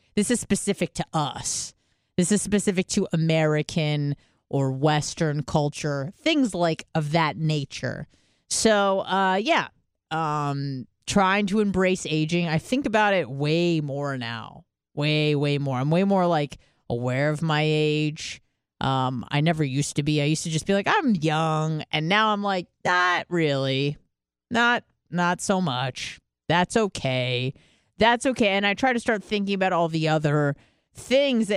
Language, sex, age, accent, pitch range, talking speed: English, female, 30-49, American, 145-195 Hz, 160 wpm